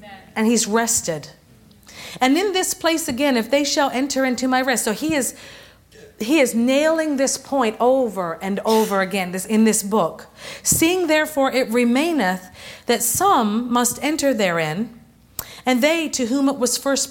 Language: English